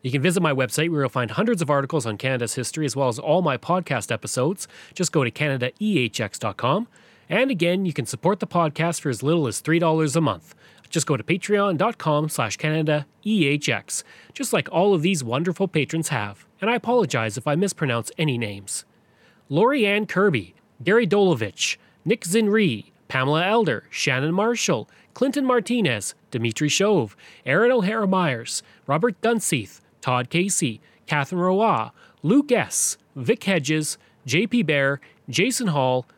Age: 30-49